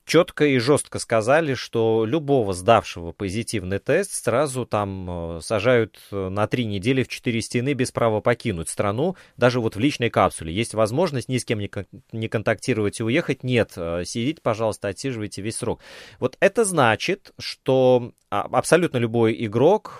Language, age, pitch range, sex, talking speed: Russian, 30-49, 100-135 Hz, male, 145 wpm